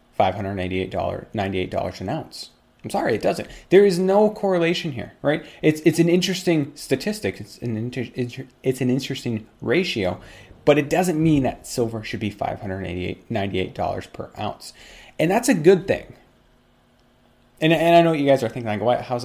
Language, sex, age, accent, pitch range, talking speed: English, male, 30-49, American, 105-140 Hz, 170 wpm